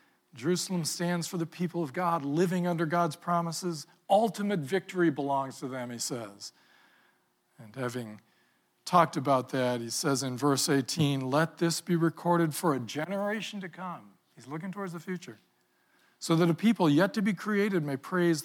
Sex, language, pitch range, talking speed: male, English, 140-180 Hz, 170 wpm